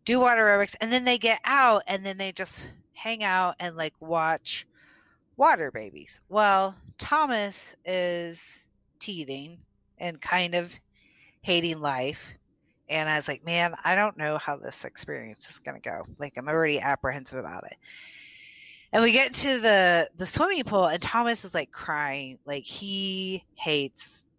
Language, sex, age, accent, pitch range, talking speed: English, female, 30-49, American, 145-230 Hz, 160 wpm